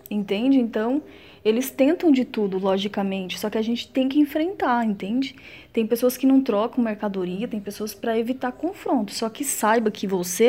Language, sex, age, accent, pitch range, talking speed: Portuguese, female, 20-39, Brazilian, 210-275 Hz, 175 wpm